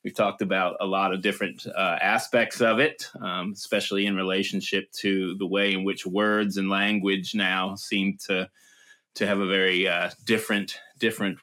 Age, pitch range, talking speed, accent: 30-49, 100-130 Hz, 175 wpm, American